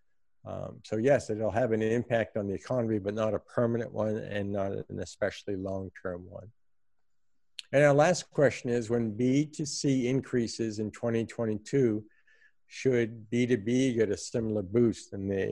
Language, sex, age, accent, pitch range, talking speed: English, male, 60-79, American, 100-120 Hz, 150 wpm